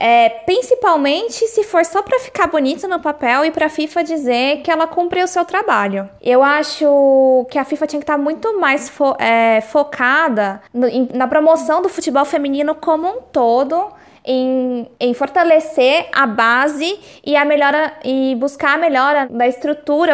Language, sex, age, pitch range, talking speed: Portuguese, female, 20-39, 250-315 Hz, 160 wpm